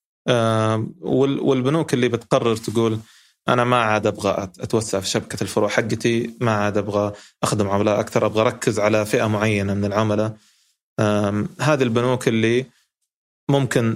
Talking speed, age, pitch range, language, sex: 130 wpm, 20-39, 105-125 Hz, Arabic, male